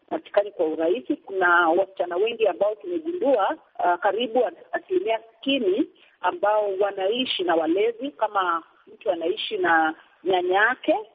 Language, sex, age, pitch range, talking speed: Swahili, female, 40-59, 200-330 Hz, 115 wpm